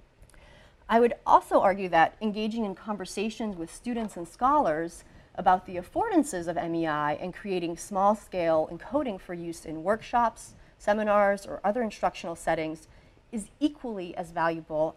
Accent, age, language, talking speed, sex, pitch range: American, 30-49, English, 140 wpm, female, 165-220 Hz